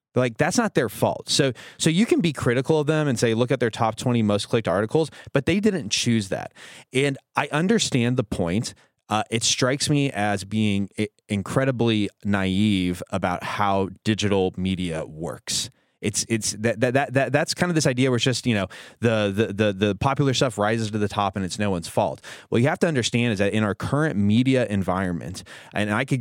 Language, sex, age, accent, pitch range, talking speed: English, male, 30-49, American, 100-130 Hz, 210 wpm